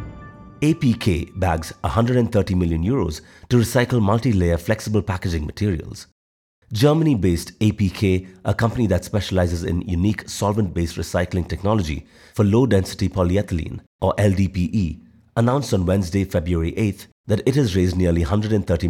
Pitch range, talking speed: 90-110 Hz, 120 wpm